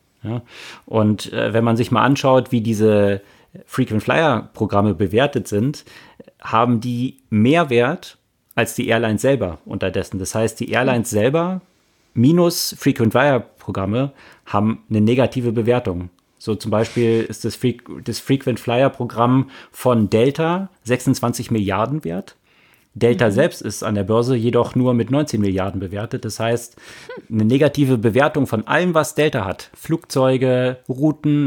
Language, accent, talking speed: German, German, 130 wpm